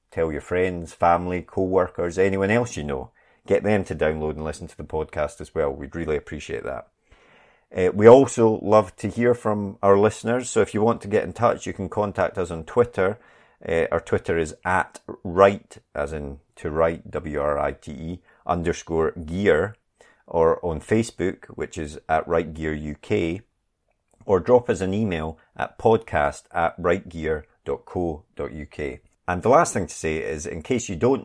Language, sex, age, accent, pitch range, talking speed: English, male, 30-49, British, 80-100 Hz, 165 wpm